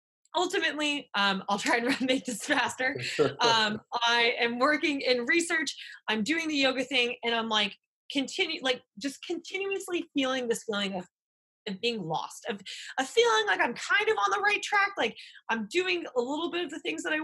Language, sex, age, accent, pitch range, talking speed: English, female, 20-39, American, 180-260 Hz, 190 wpm